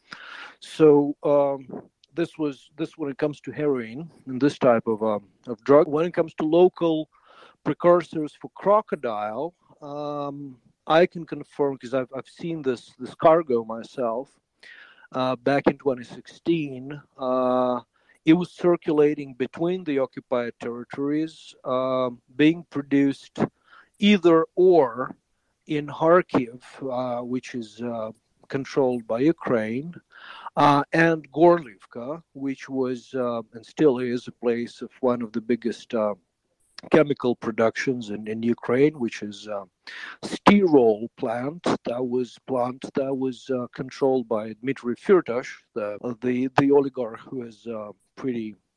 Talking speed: 135 wpm